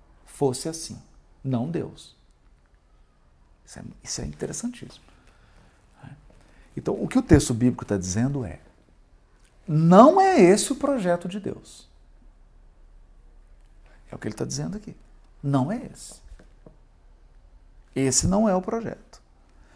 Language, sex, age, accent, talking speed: Portuguese, male, 50-69, Brazilian, 120 wpm